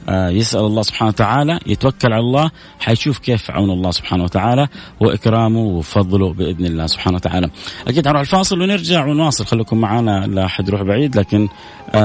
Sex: male